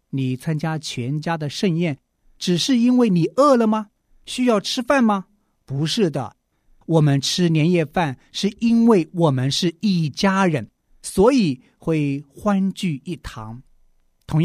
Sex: male